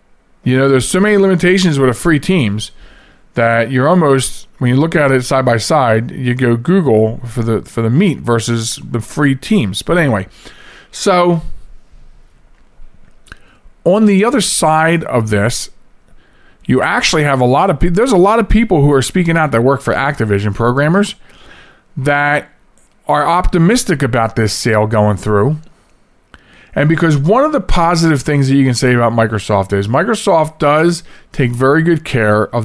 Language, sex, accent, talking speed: English, male, American, 165 wpm